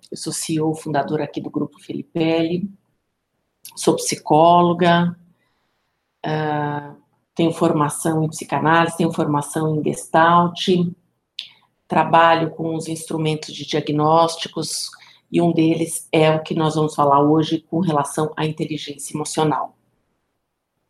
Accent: Brazilian